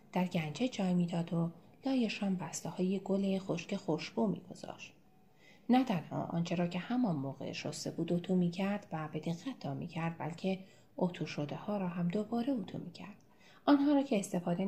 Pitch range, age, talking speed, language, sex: 165-210 Hz, 30-49, 170 wpm, Persian, female